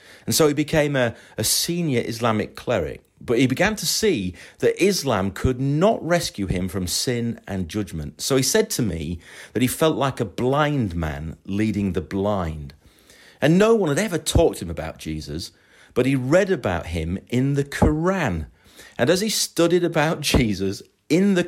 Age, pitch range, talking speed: 40-59, 95-155 Hz, 180 wpm